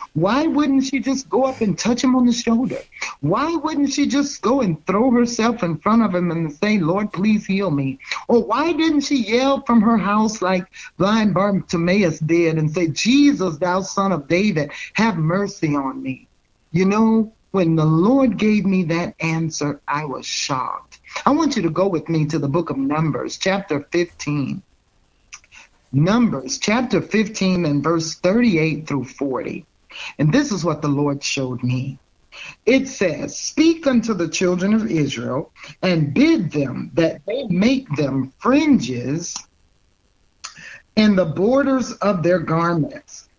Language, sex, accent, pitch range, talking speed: English, male, American, 155-230 Hz, 160 wpm